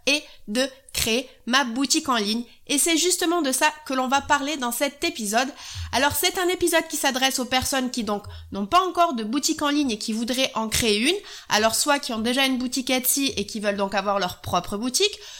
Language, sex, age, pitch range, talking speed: French, female, 30-49, 230-300 Hz, 225 wpm